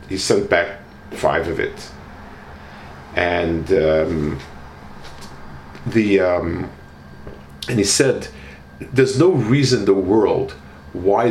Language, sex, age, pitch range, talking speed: English, male, 40-59, 70-110 Hz, 105 wpm